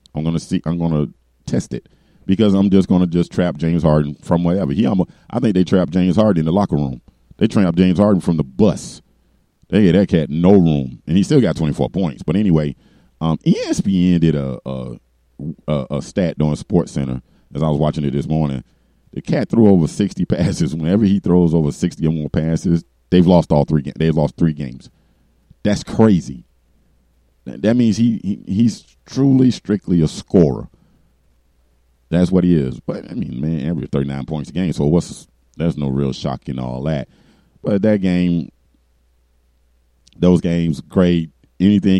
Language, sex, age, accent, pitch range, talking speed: English, male, 40-59, American, 70-85 Hz, 190 wpm